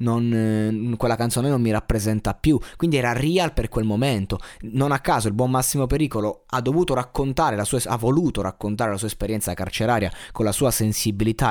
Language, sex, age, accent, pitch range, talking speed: Italian, male, 20-39, native, 110-135 Hz, 195 wpm